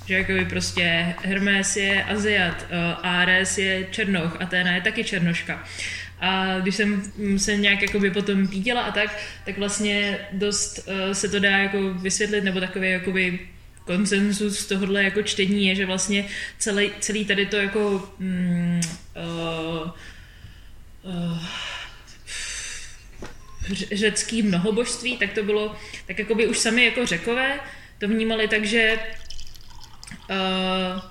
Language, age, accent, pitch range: Czech, 20-39, native, 170-215 Hz